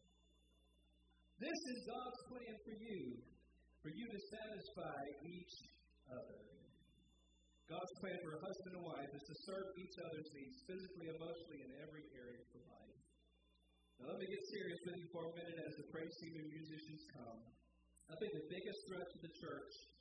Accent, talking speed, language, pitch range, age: American, 170 wpm, English, 130-205 Hz, 50-69